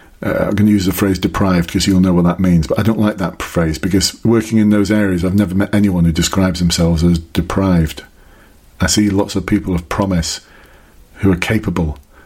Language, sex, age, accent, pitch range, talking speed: English, male, 40-59, British, 85-105 Hz, 215 wpm